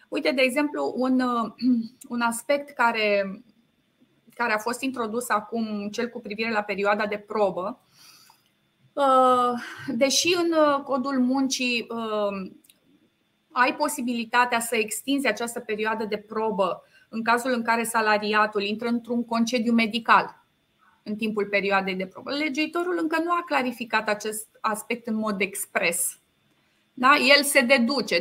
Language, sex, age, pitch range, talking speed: Romanian, female, 20-39, 220-250 Hz, 120 wpm